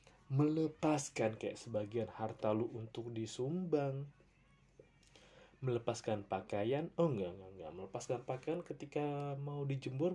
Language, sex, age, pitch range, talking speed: Indonesian, male, 20-39, 115-150 Hz, 100 wpm